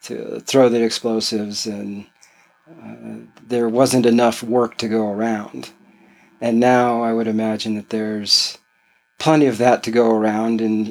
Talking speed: 150 wpm